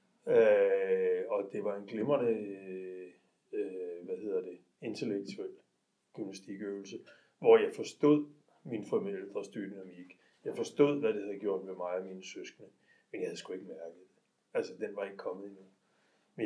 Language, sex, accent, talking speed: Danish, male, native, 155 wpm